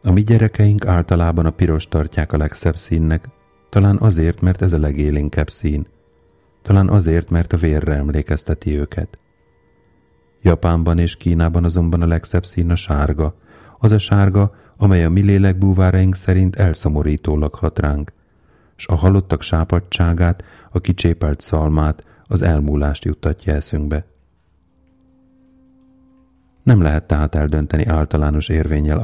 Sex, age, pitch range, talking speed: male, 40-59, 75-95 Hz, 125 wpm